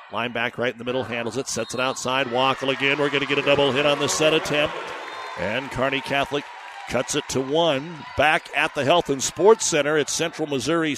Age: 50-69